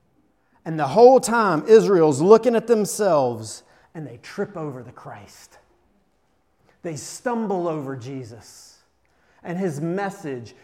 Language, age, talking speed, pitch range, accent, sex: English, 30-49, 120 wpm, 140-200 Hz, American, male